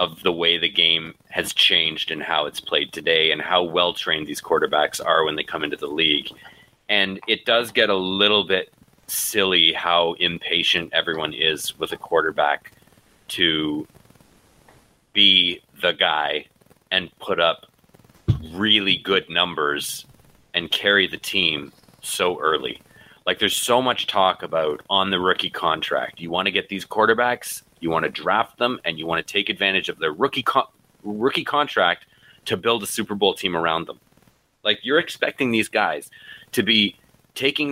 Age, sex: 30-49, male